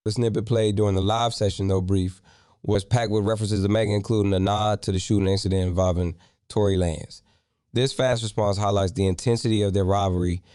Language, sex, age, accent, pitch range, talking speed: English, male, 20-39, American, 95-110 Hz, 195 wpm